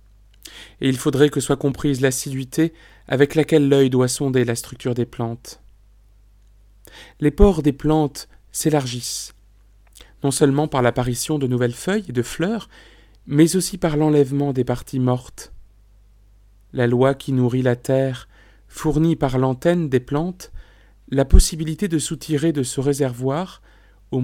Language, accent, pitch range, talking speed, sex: French, French, 115-150 Hz, 140 wpm, male